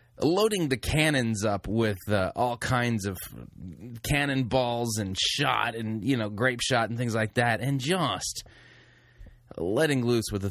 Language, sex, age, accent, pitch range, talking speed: English, male, 20-39, American, 95-125 Hz, 155 wpm